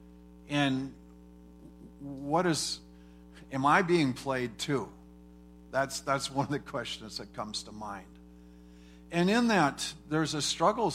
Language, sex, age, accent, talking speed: English, male, 50-69, American, 130 wpm